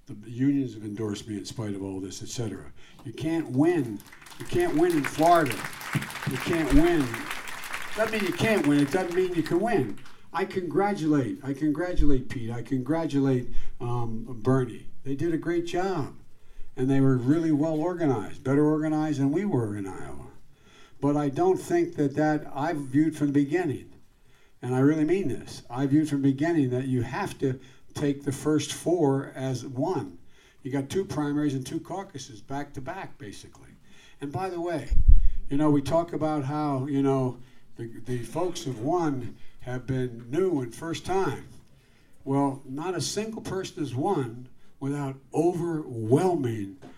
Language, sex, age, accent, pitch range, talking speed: English, male, 60-79, American, 130-160 Hz, 170 wpm